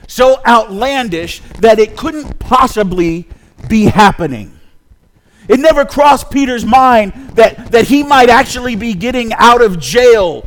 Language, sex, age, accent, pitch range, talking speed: English, male, 50-69, American, 170-275 Hz, 130 wpm